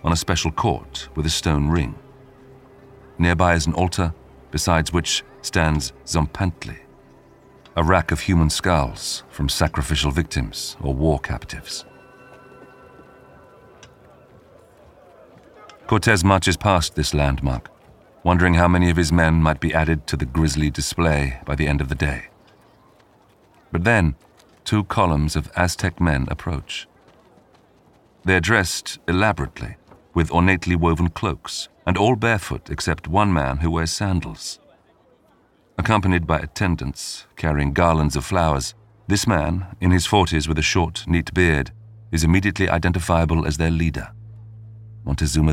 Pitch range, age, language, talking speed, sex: 80-105 Hz, 40-59, English, 130 wpm, male